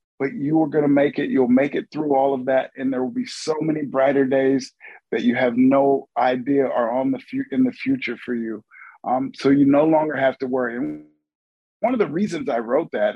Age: 50-69